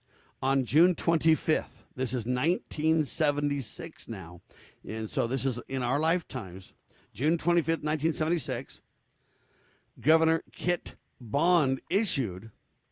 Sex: male